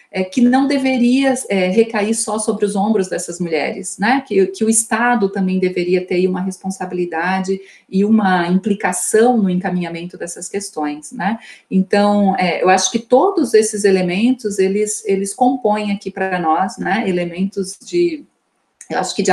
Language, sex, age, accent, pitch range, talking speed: Portuguese, female, 40-59, Brazilian, 180-220 Hz, 160 wpm